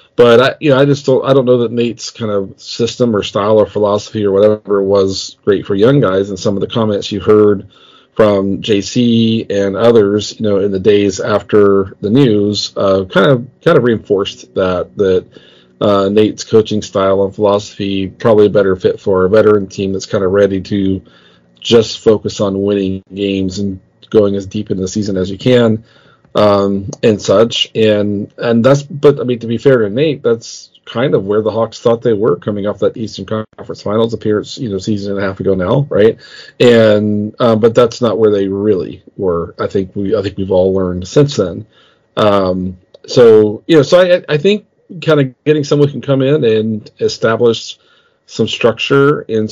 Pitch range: 100-115 Hz